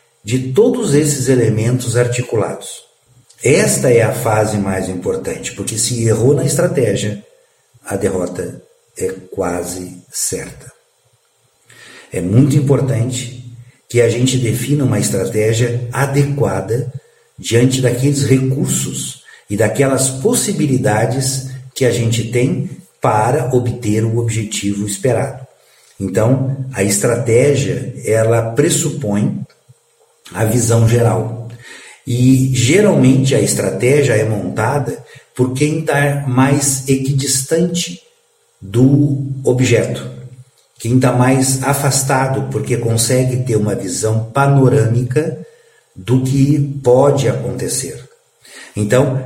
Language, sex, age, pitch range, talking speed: Portuguese, male, 50-69, 115-140 Hz, 100 wpm